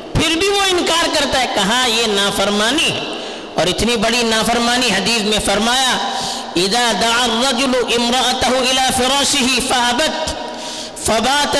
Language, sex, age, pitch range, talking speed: Urdu, female, 50-69, 230-310 Hz, 105 wpm